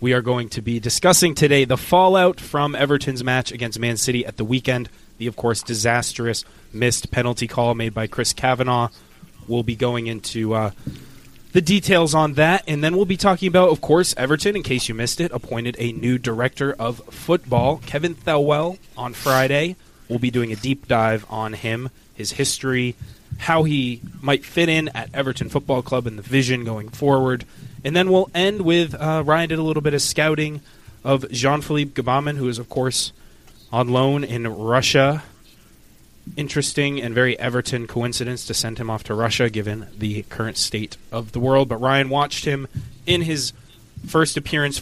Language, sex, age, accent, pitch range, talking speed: English, male, 20-39, American, 115-145 Hz, 180 wpm